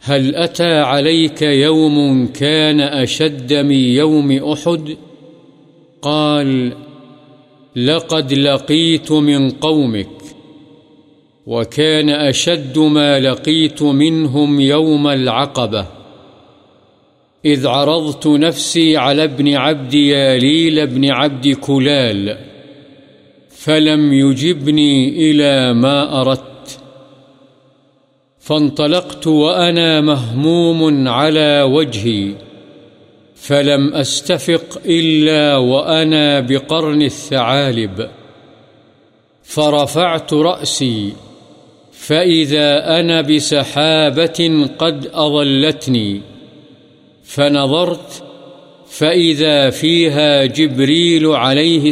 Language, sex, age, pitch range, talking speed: Urdu, male, 50-69, 135-155 Hz, 70 wpm